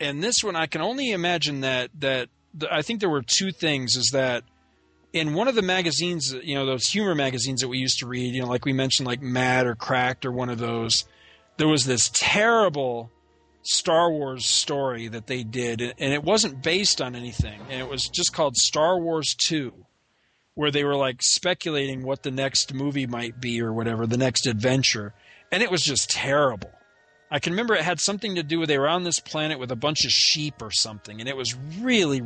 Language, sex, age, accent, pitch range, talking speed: English, male, 40-59, American, 125-155 Hz, 215 wpm